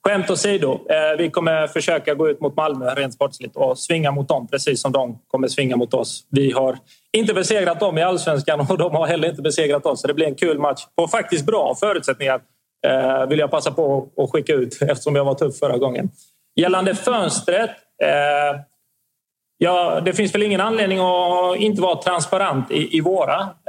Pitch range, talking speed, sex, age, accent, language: 140-180 Hz, 180 wpm, male, 30-49, native, Swedish